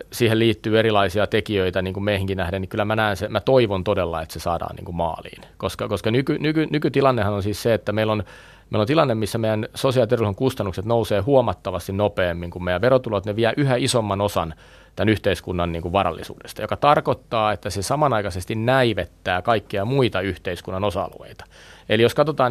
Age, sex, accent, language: 30-49, male, native, Finnish